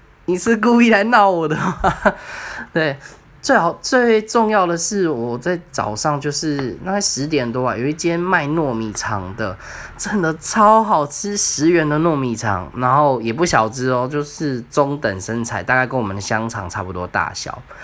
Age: 10-29